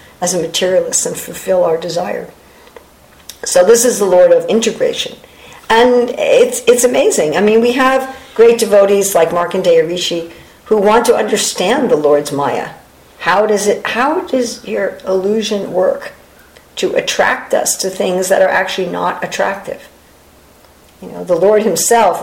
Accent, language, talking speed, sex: American, English, 155 wpm, female